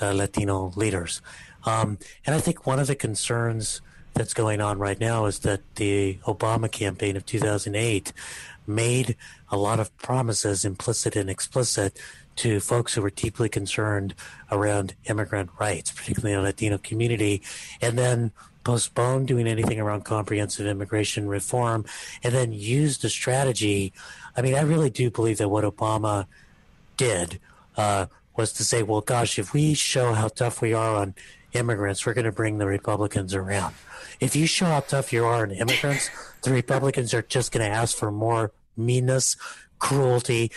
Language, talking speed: English, 160 wpm